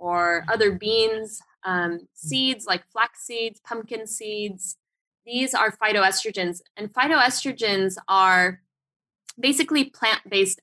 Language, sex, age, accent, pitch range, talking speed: English, female, 10-29, American, 200-255 Hz, 100 wpm